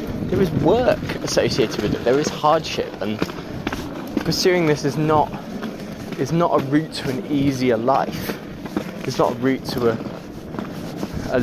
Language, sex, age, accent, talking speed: English, male, 20-39, British, 150 wpm